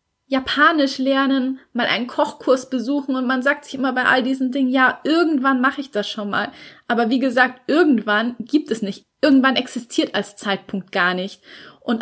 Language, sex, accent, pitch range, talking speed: German, female, German, 210-255 Hz, 180 wpm